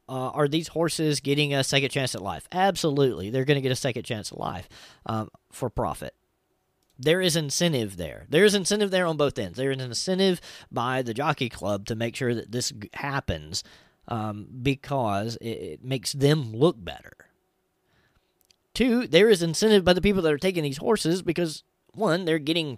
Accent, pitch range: American, 120-165 Hz